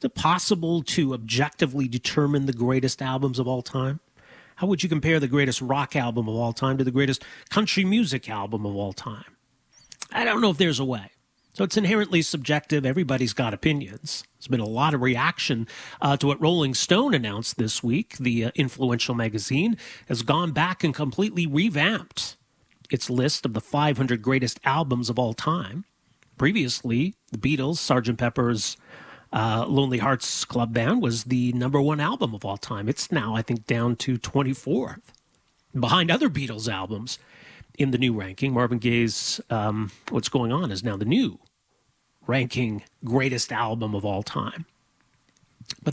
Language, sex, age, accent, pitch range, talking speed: English, male, 40-59, American, 120-155 Hz, 170 wpm